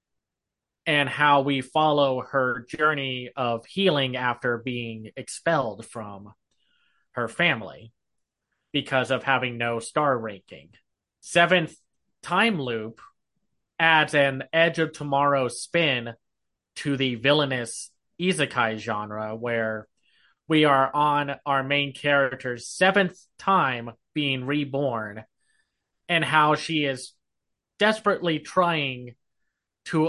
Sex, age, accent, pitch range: male, 30-49, American, 120-155 Hz